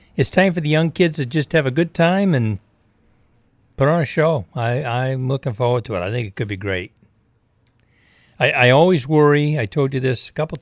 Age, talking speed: 60-79, 220 wpm